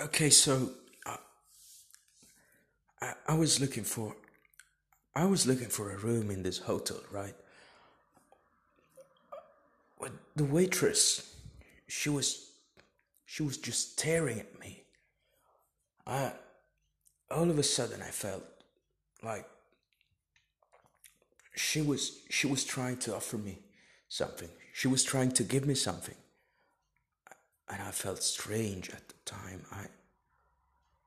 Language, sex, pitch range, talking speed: Italian, male, 105-145 Hz, 120 wpm